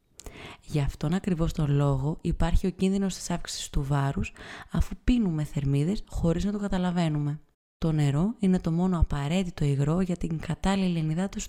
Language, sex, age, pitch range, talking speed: Greek, female, 20-39, 155-200 Hz, 155 wpm